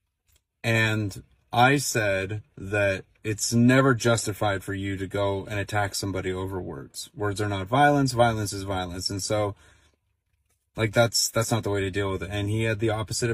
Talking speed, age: 180 wpm, 30-49